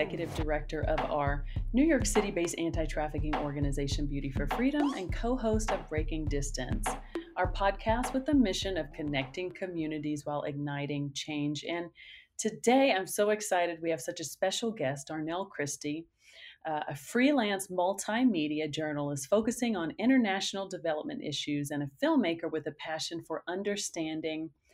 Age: 40-59